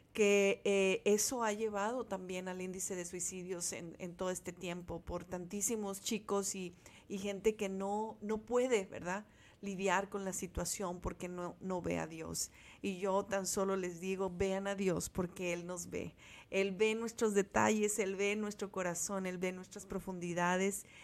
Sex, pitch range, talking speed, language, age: female, 175-200 Hz, 175 wpm, Spanish, 40-59